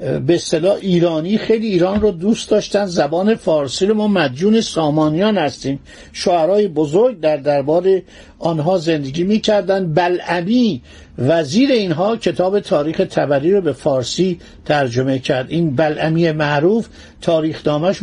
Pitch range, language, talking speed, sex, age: 150-205 Hz, Persian, 125 wpm, male, 50-69